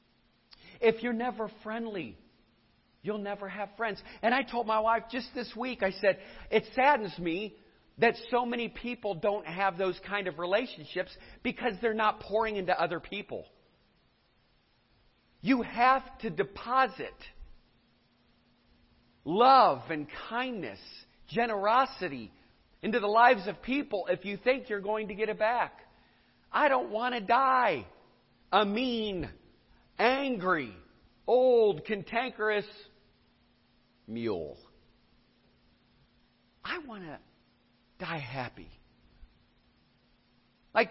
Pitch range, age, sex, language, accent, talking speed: 155-230 Hz, 50-69, male, English, American, 115 wpm